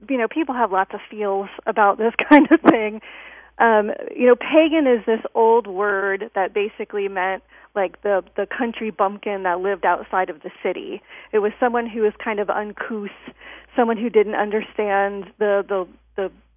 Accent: American